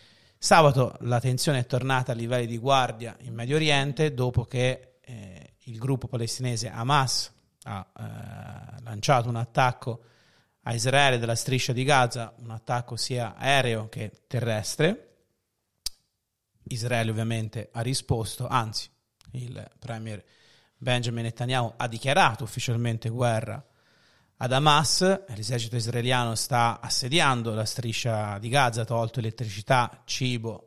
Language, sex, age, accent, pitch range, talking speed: Italian, male, 30-49, native, 115-130 Hz, 120 wpm